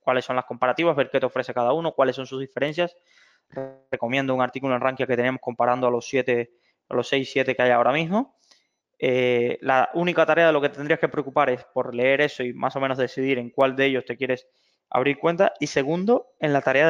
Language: Spanish